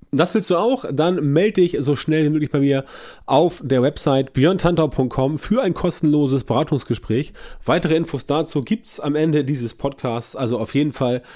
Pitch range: 130-165 Hz